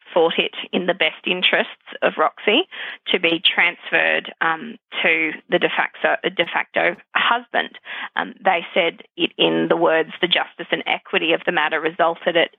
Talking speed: 160 wpm